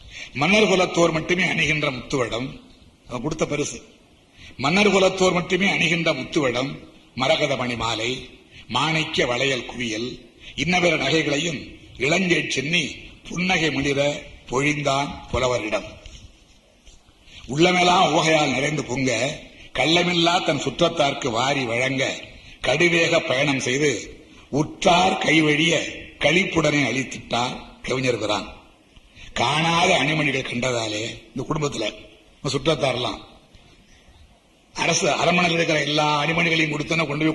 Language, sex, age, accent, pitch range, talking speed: Tamil, male, 60-79, native, 130-170 Hz, 80 wpm